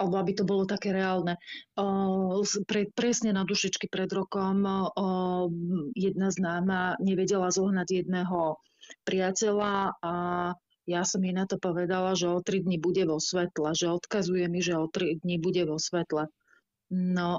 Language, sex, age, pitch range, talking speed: Slovak, female, 30-49, 175-195 Hz, 160 wpm